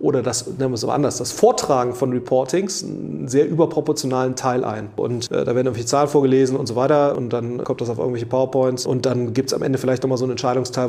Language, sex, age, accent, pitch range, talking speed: German, male, 30-49, German, 130-145 Hz, 240 wpm